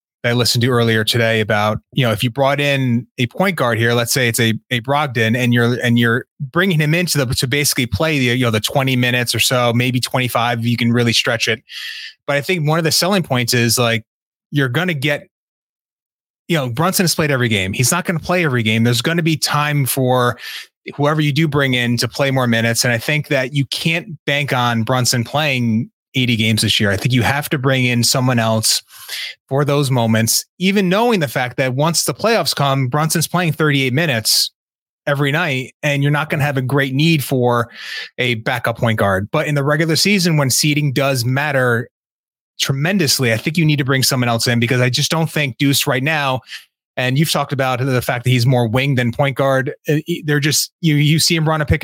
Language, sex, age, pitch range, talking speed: English, male, 30-49, 120-150 Hz, 225 wpm